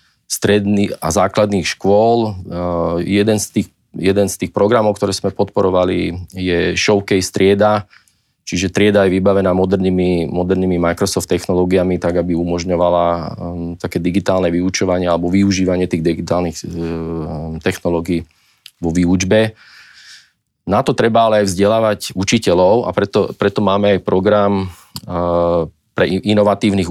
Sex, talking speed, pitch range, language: male, 125 wpm, 90-105 Hz, Slovak